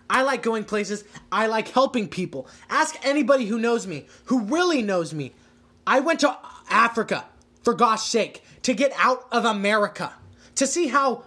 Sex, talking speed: male, 170 wpm